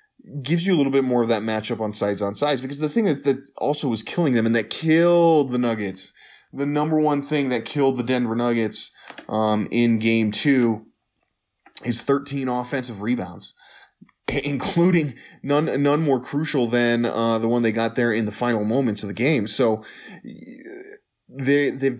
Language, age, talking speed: English, 20-39, 180 wpm